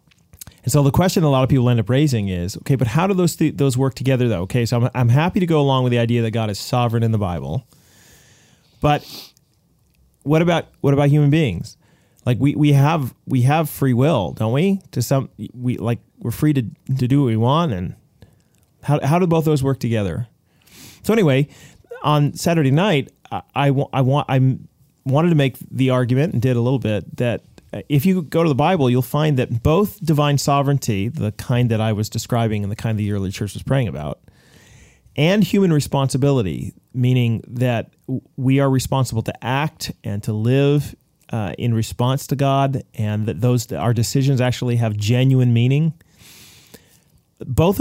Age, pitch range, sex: 30-49, 120-150 Hz, male